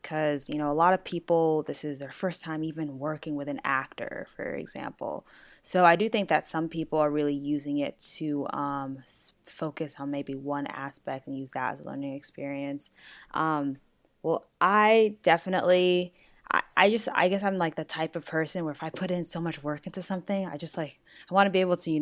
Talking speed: 215 wpm